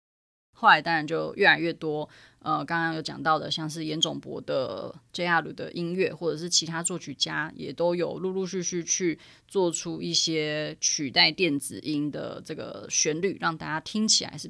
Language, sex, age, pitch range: Chinese, female, 20-39, 155-195 Hz